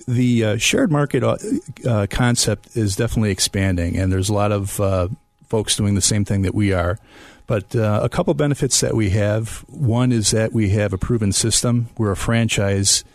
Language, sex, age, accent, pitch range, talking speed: English, male, 40-59, American, 100-115 Hz, 190 wpm